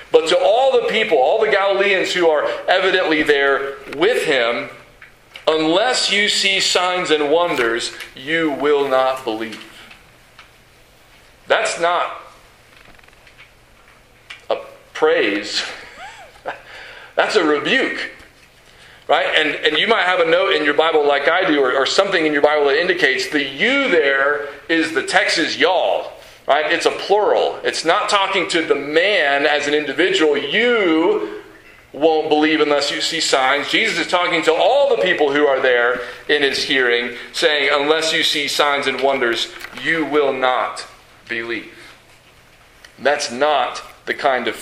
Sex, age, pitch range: male, 40-59, 140-195 Hz